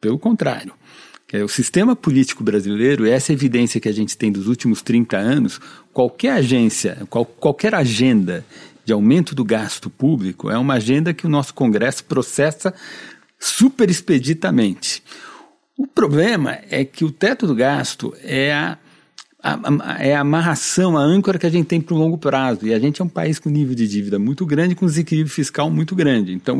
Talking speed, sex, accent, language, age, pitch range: 180 wpm, male, Brazilian, Portuguese, 50-69, 125-175 Hz